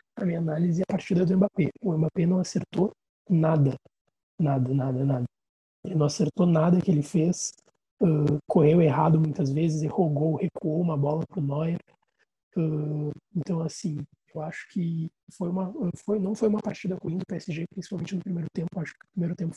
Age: 20-39